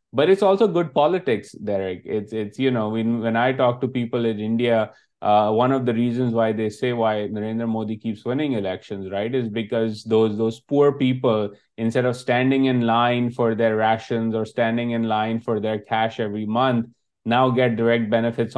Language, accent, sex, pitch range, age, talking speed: English, Indian, male, 110-125 Hz, 30-49, 195 wpm